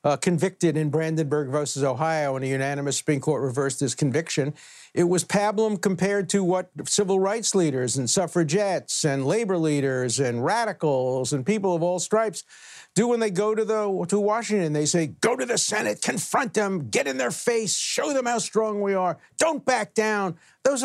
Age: 50-69